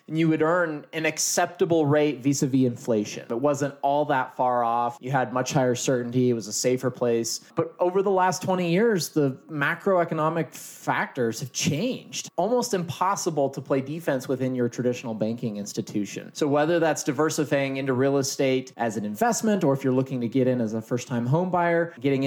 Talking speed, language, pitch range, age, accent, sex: 185 wpm, English, 125-165 Hz, 20-39, American, male